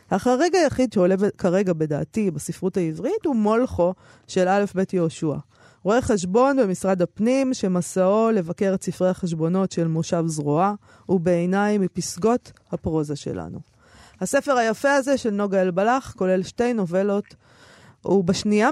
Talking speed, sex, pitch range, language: 130 wpm, female, 170-215 Hz, Hebrew